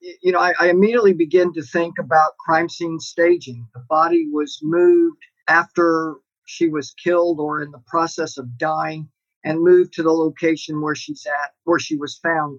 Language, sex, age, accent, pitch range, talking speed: English, male, 50-69, American, 155-195 Hz, 180 wpm